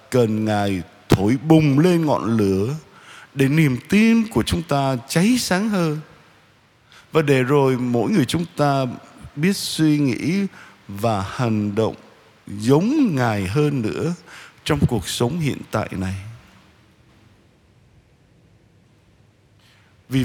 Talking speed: 120 wpm